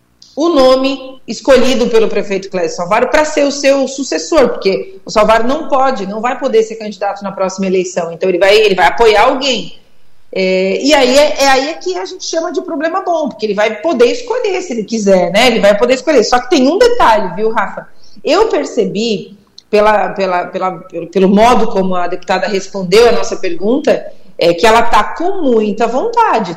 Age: 40-59